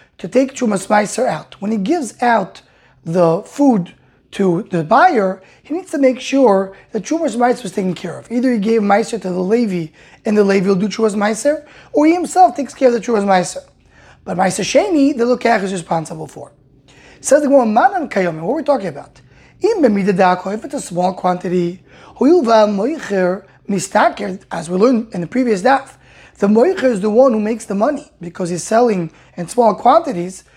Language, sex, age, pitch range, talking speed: English, male, 20-39, 185-260 Hz, 175 wpm